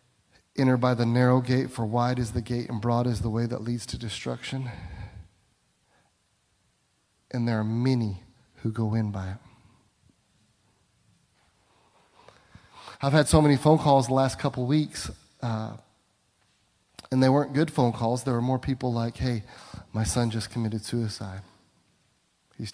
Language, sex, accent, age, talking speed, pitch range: English, male, American, 30-49, 150 wpm, 110-140 Hz